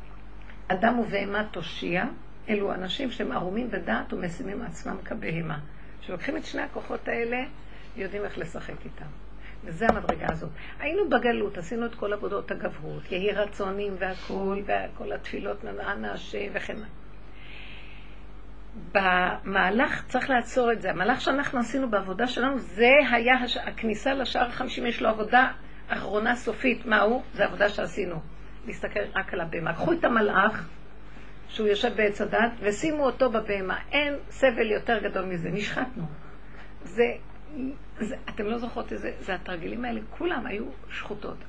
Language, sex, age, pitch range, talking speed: Hebrew, female, 50-69, 200-240 Hz, 135 wpm